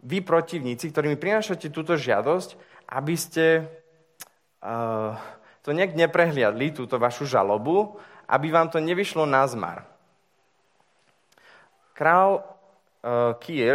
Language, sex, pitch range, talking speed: Slovak, male, 120-165 Hz, 110 wpm